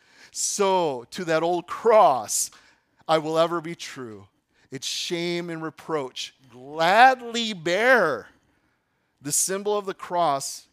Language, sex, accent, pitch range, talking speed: English, male, American, 120-180 Hz, 115 wpm